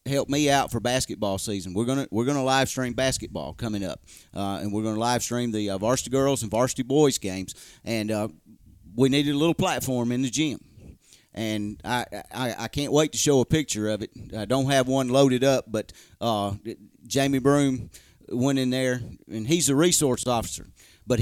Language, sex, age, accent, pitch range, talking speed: English, male, 40-59, American, 110-140 Hz, 200 wpm